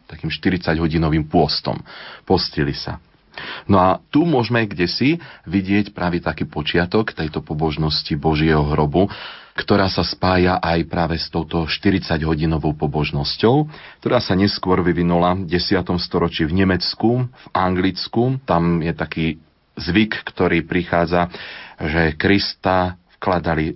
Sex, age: male, 40-59